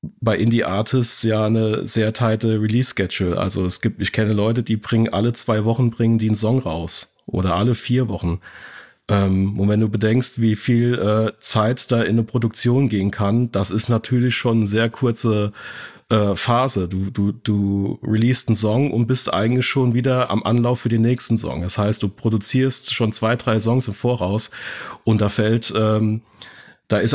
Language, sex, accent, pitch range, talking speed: German, male, German, 105-120 Hz, 190 wpm